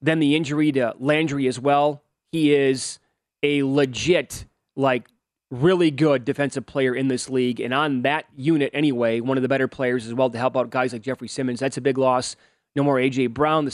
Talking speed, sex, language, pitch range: 205 wpm, male, English, 130-150 Hz